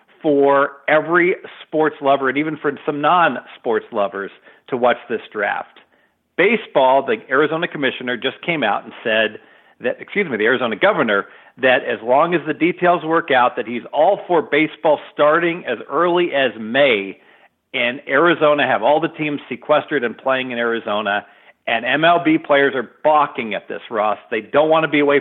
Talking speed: 170 wpm